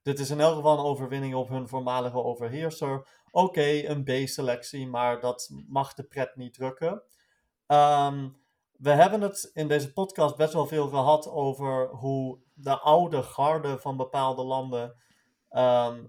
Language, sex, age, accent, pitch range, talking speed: Dutch, male, 30-49, Dutch, 125-150 Hz, 155 wpm